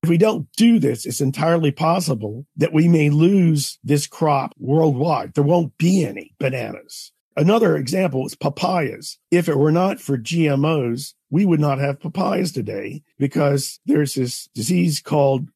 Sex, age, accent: male, 50-69, American